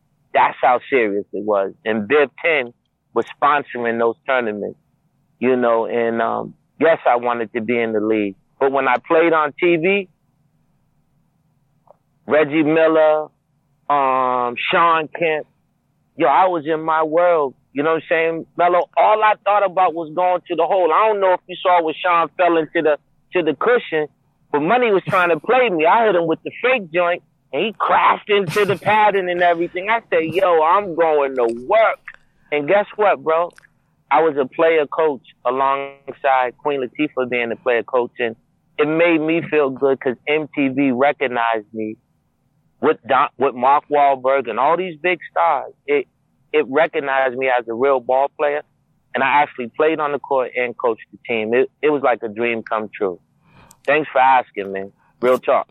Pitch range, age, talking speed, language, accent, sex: 130-175 Hz, 30-49, 180 wpm, English, American, male